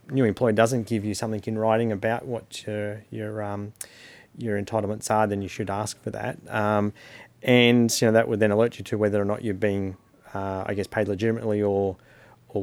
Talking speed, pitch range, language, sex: 210 wpm, 100-115 Hz, English, male